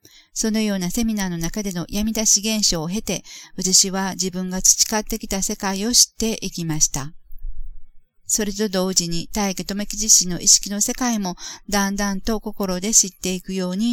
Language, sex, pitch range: Japanese, female, 180-215 Hz